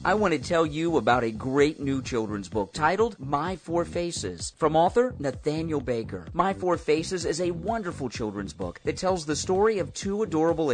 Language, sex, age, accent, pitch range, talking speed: English, male, 40-59, American, 120-175 Hz, 190 wpm